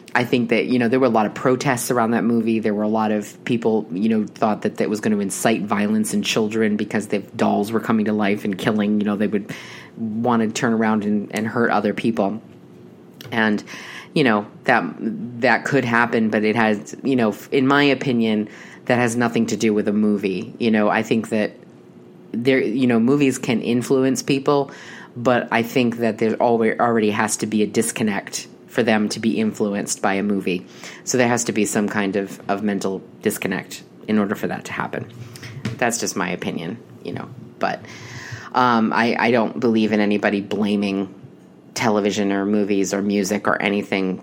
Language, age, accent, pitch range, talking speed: English, 30-49, American, 100-120 Hz, 200 wpm